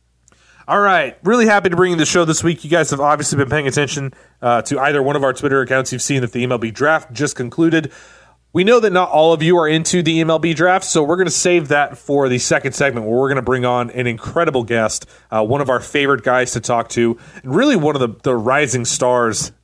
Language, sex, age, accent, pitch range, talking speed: English, male, 30-49, American, 120-160 Hz, 250 wpm